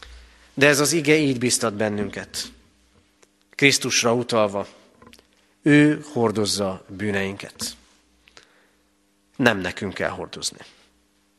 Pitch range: 100-135 Hz